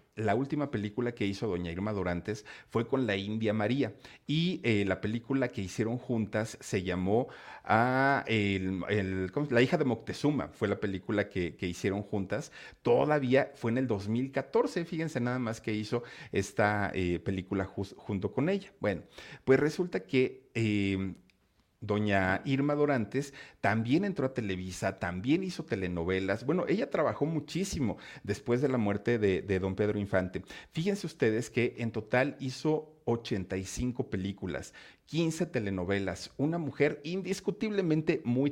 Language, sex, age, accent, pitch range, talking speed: Spanish, male, 50-69, Mexican, 100-140 Hz, 150 wpm